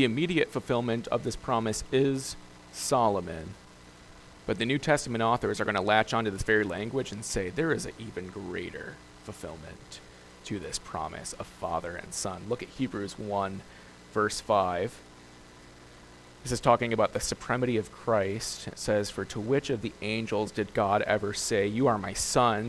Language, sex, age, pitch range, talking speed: English, male, 30-49, 85-120 Hz, 175 wpm